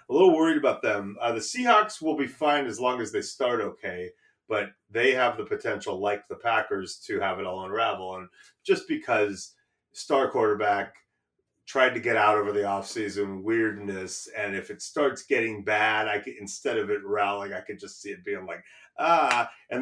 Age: 30-49